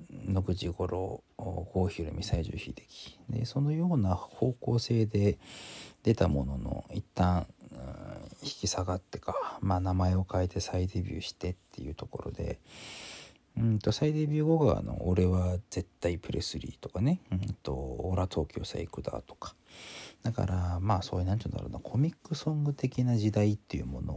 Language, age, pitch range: Japanese, 40-59, 90-115 Hz